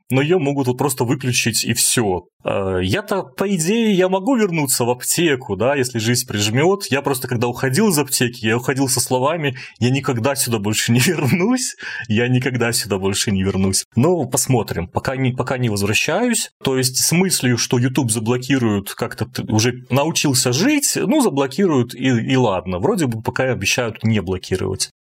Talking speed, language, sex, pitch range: 175 wpm, Russian, male, 115-145 Hz